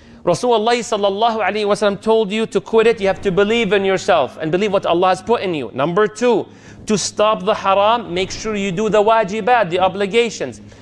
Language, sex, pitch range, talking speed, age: English, male, 175-225 Hz, 195 wpm, 30-49